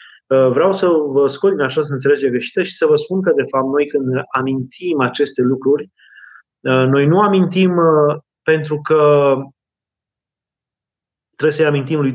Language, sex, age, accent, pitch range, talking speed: Romanian, male, 30-49, native, 135-170 Hz, 150 wpm